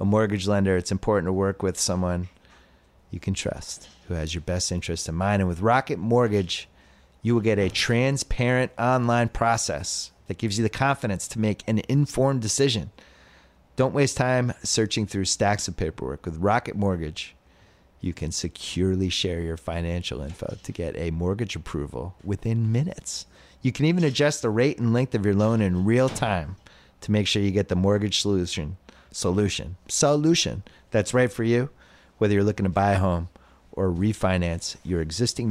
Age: 30-49